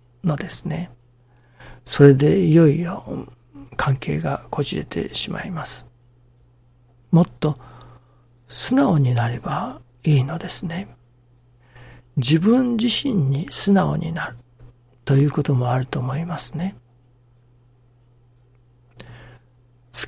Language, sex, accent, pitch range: Japanese, male, native, 120-155 Hz